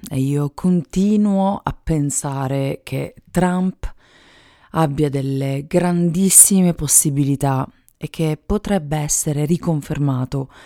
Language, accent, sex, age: Italian, native, female, 40-59